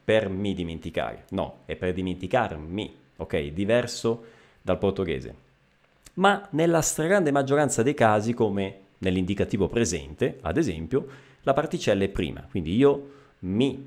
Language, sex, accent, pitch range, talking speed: Italian, male, native, 95-140 Hz, 125 wpm